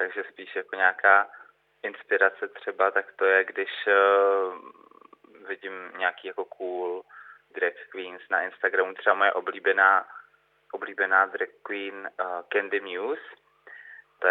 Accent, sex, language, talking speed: native, male, Czech, 120 wpm